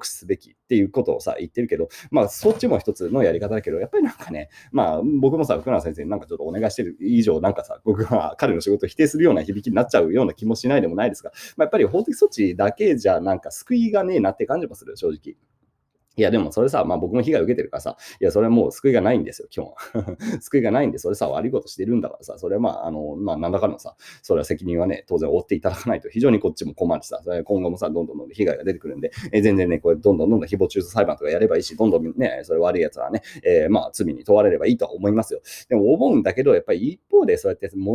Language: Japanese